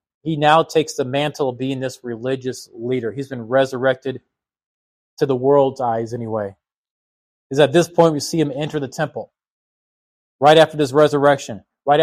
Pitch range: 130-155 Hz